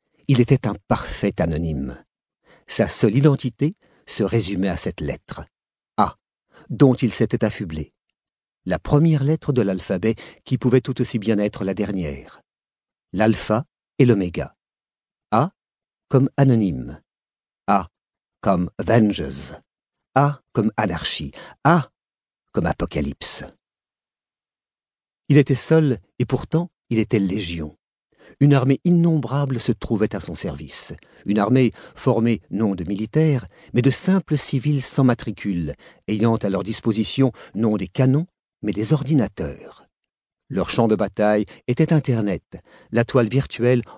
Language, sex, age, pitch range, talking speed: French, male, 50-69, 100-135 Hz, 125 wpm